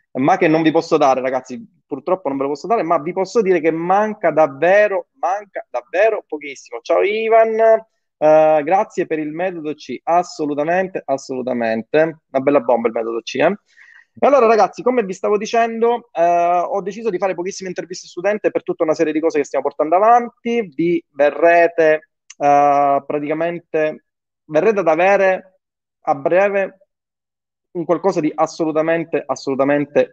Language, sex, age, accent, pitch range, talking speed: Italian, male, 30-49, native, 145-195 Hz, 155 wpm